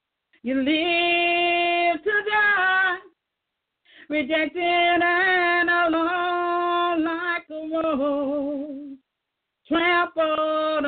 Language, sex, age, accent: English, female, 40-59, American